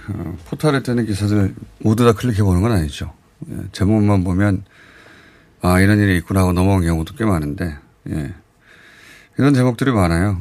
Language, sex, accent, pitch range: Korean, male, native, 95-130 Hz